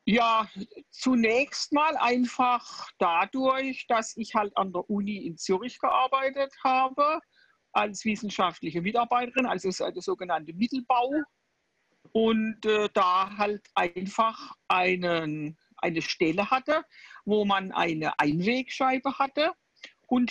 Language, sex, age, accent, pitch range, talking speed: German, female, 60-79, German, 185-255 Hz, 110 wpm